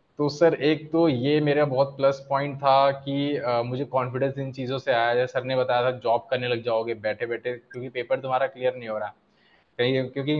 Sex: male